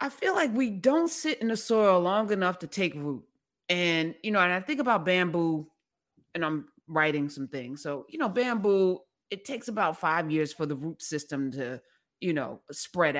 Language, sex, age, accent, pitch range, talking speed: English, female, 30-49, American, 175-265 Hz, 200 wpm